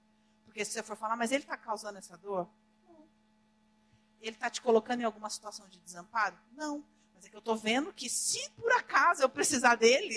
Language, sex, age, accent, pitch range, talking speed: Portuguese, female, 50-69, Brazilian, 210-240 Hz, 205 wpm